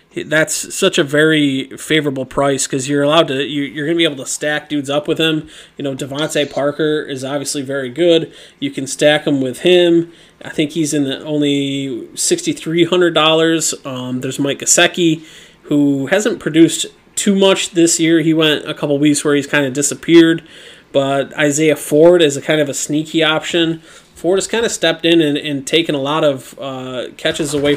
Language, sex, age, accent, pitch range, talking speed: English, male, 20-39, American, 140-160 Hz, 190 wpm